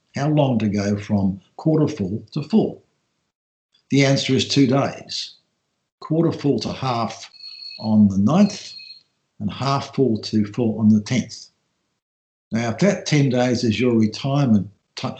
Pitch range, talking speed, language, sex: 110-145 Hz, 145 wpm, English, male